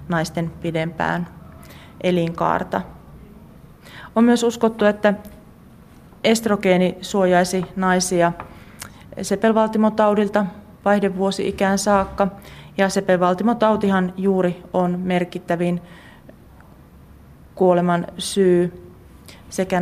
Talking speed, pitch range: 60 wpm, 170-195 Hz